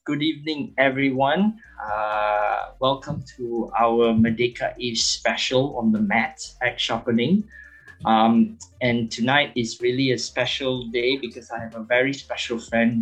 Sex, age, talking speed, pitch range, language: male, 20-39, 140 wpm, 115-145 Hz, English